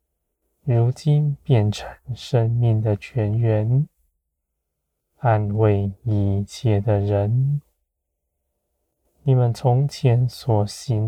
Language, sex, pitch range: Chinese, male, 70-120 Hz